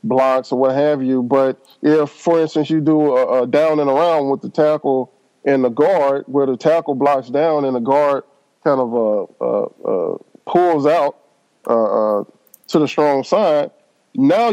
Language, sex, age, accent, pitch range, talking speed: English, male, 20-39, American, 140-165 Hz, 180 wpm